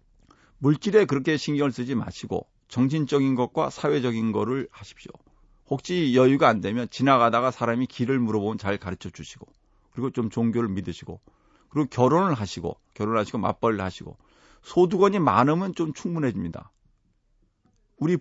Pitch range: 115-155 Hz